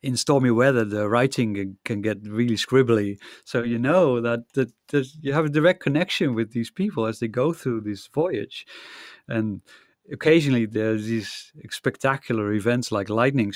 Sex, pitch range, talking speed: male, 110-130 Hz, 160 wpm